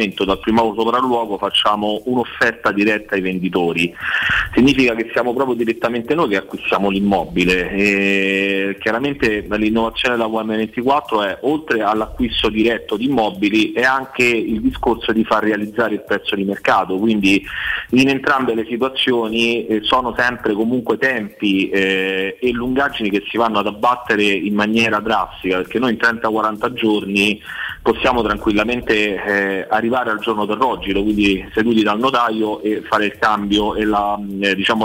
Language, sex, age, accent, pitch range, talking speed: Italian, male, 30-49, native, 100-120 Hz, 140 wpm